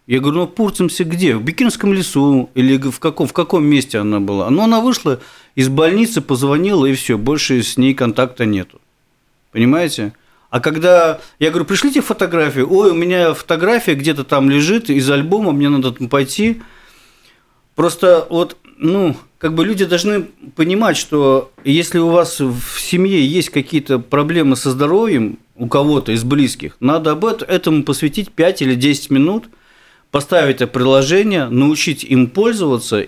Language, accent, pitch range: Russian, native, 130-170 Hz